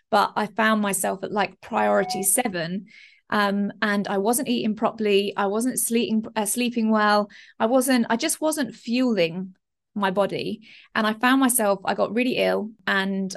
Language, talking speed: English, 165 wpm